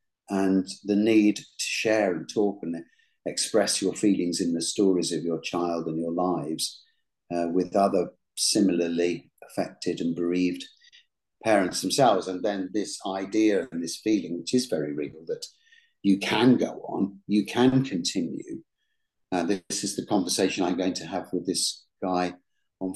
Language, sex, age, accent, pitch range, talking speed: English, male, 50-69, British, 85-110 Hz, 160 wpm